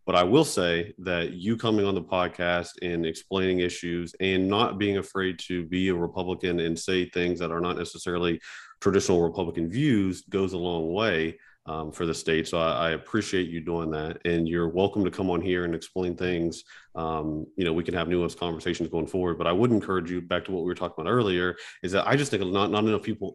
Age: 40-59